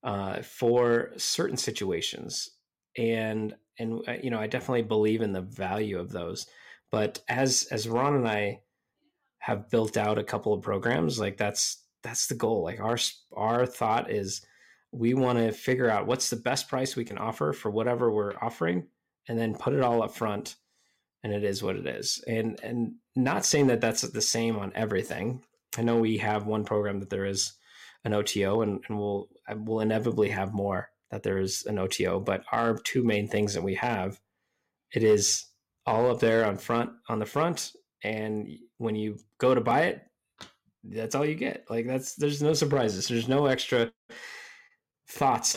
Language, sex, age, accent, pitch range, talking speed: English, male, 20-39, American, 105-120 Hz, 185 wpm